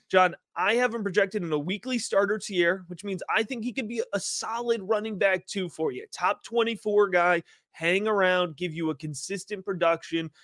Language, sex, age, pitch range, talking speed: English, male, 30-49, 160-210 Hz, 195 wpm